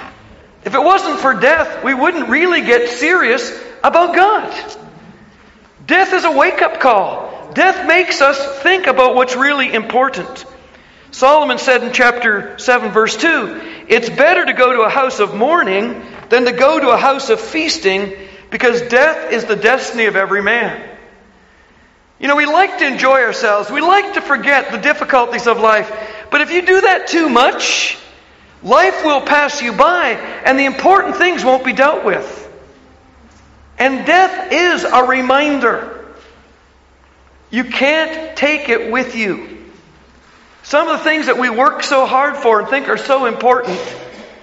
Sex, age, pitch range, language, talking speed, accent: male, 50-69, 225-300 Hz, English, 160 wpm, American